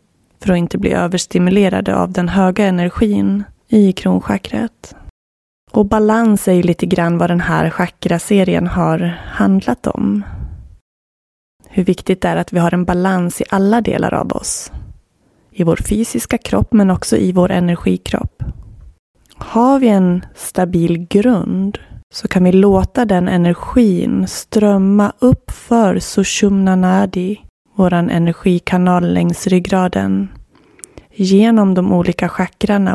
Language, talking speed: Swedish, 130 wpm